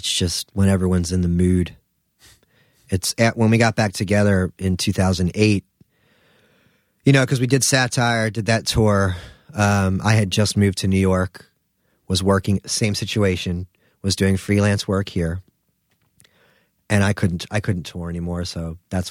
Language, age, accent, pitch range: English, 30-49, American, 90-110 Hz